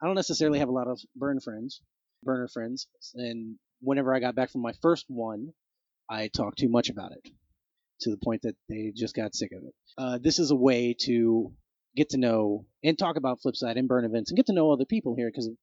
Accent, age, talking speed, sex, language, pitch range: American, 30-49, 235 wpm, male, English, 120-145 Hz